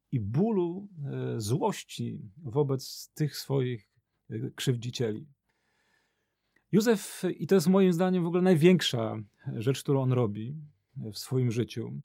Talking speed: 115 wpm